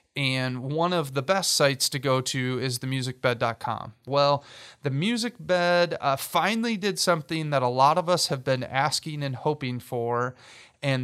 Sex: male